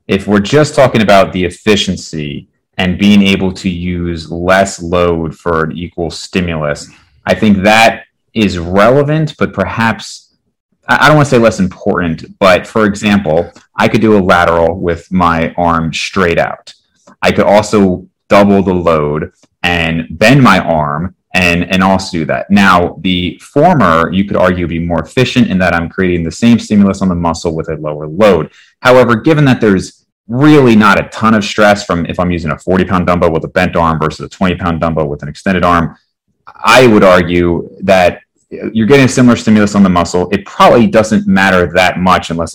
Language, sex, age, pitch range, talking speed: English, male, 30-49, 85-105 Hz, 185 wpm